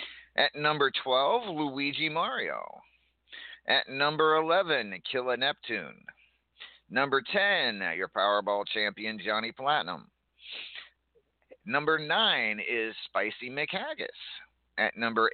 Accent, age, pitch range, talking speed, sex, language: American, 40-59, 105-145 Hz, 95 wpm, male, English